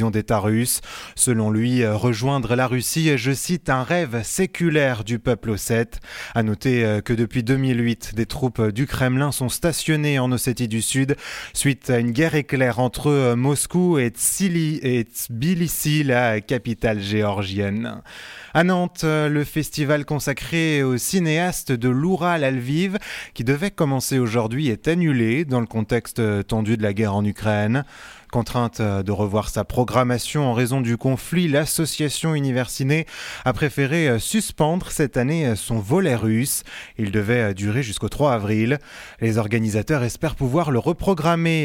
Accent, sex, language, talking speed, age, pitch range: French, male, English, 145 wpm, 20-39, 115-150 Hz